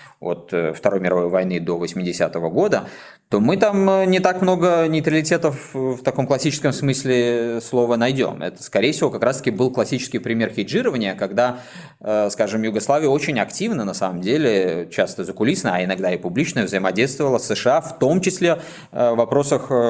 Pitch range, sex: 95-135 Hz, male